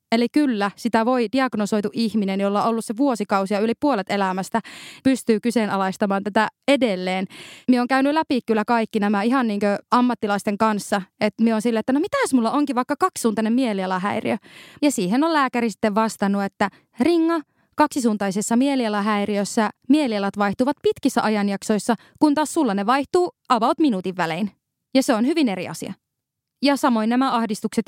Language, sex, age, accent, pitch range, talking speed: Finnish, female, 20-39, native, 205-250 Hz, 160 wpm